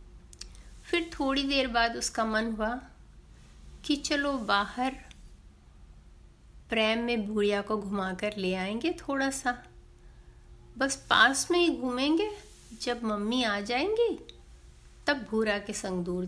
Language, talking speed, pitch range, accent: Hindi, 120 wpm, 210-290 Hz, native